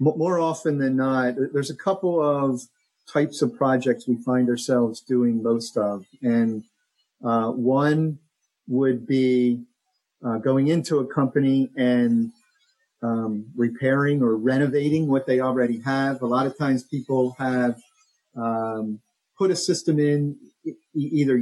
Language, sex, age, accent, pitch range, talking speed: English, male, 50-69, American, 120-145 Hz, 135 wpm